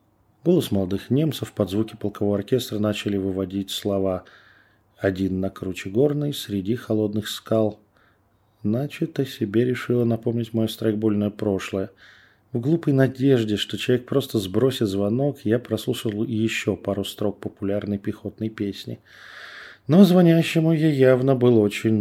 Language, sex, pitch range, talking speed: Russian, male, 100-120 Hz, 130 wpm